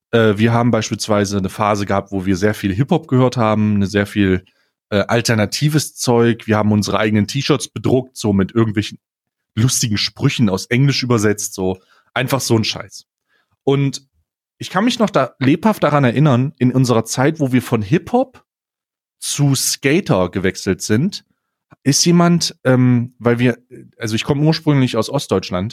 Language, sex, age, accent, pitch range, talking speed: German, male, 30-49, German, 110-150 Hz, 155 wpm